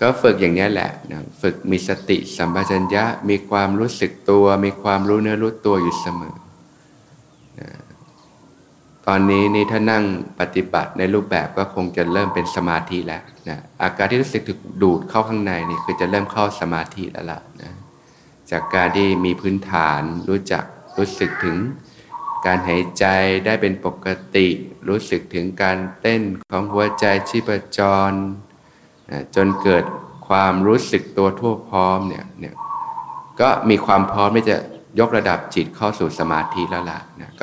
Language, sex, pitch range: Thai, male, 90-105 Hz